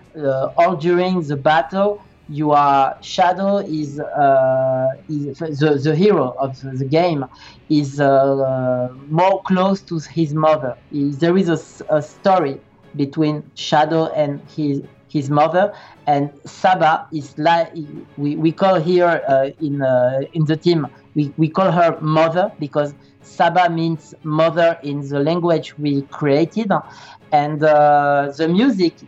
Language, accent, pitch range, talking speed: English, French, 140-175 Hz, 140 wpm